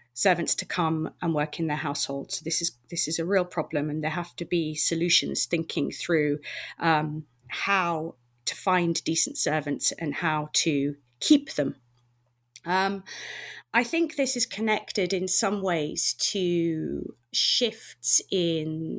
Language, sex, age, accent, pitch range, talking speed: English, female, 30-49, British, 160-190 Hz, 145 wpm